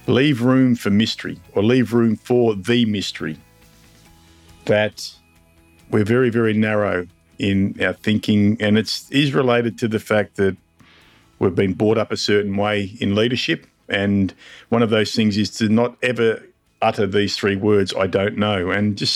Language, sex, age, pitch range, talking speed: English, male, 50-69, 105-120 Hz, 165 wpm